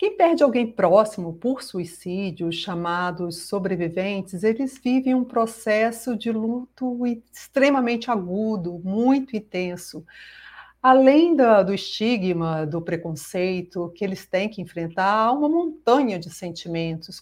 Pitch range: 185-260 Hz